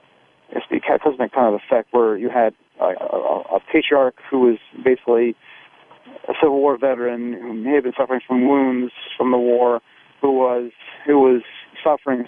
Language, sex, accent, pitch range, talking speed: English, male, American, 120-135 Hz, 170 wpm